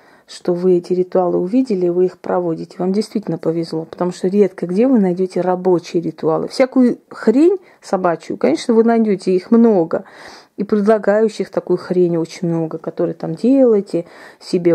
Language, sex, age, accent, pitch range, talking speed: Russian, female, 30-49, native, 175-215 Hz, 150 wpm